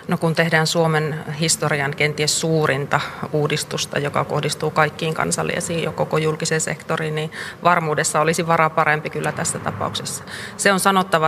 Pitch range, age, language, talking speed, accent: 150-165 Hz, 30-49, Finnish, 145 wpm, native